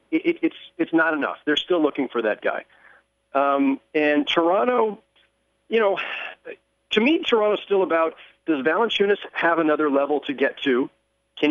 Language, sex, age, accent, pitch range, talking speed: English, male, 50-69, American, 140-205 Hz, 165 wpm